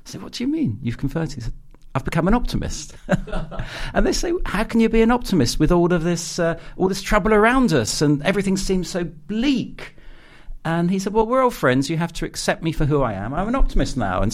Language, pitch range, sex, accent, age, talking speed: English, 120-175 Hz, male, British, 50-69, 245 wpm